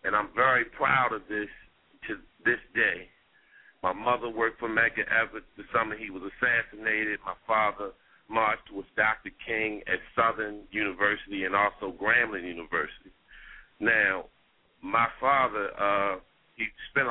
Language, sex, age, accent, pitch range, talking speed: English, male, 40-59, American, 110-135 Hz, 135 wpm